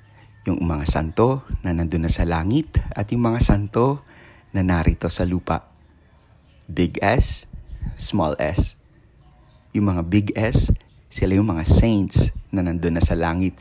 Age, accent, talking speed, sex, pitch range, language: 30-49, native, 145 wpm, male, 85-105 Hz, Filipino